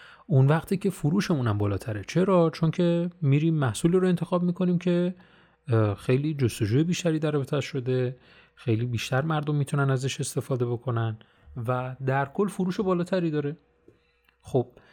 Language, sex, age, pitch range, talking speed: Persian, male, 30-49, 115-170 Hz, 135 wpm